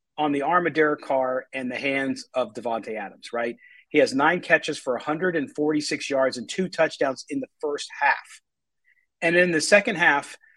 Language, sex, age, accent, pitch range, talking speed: English, male, 40-59, American, 135-175 Hz, 180 wpm